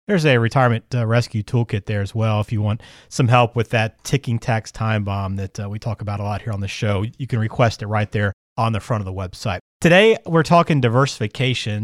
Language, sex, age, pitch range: English, male, 40-59, 115-165 Hz